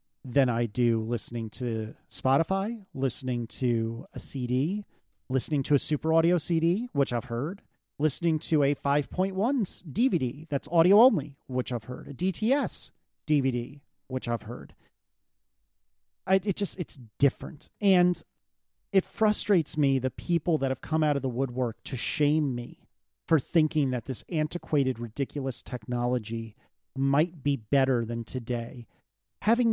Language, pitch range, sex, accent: English, 125-180 Hz, male, American